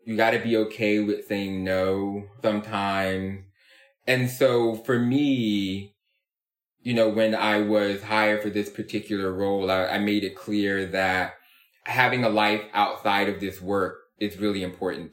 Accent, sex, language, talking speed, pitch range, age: American, male, English, 155 wpm, 95-110 Hz, 20-39